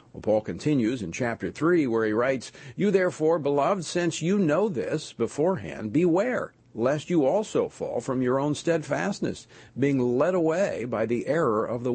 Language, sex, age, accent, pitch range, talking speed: English, male, 50-69, American, 120-160 Hz, 165 wpm